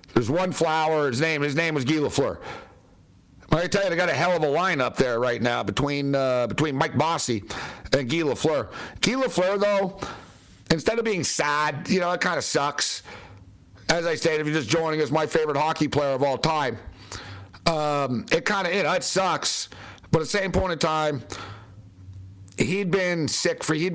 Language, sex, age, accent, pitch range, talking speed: English, male, 60-79, American, 120-170 Hz, 200 wpm